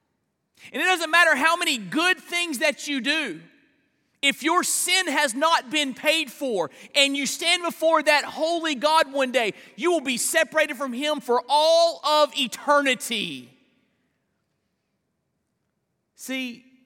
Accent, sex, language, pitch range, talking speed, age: American, male, English, 200-300 Hz, 140 wpm, 40-59